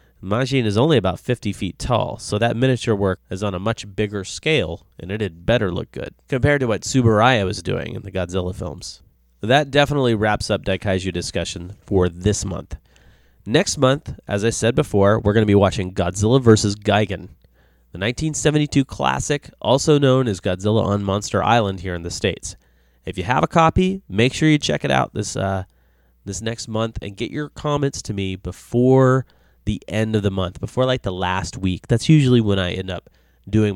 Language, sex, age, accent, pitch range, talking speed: English, male, 30-49, American, 95-120 Hz, 195 wpm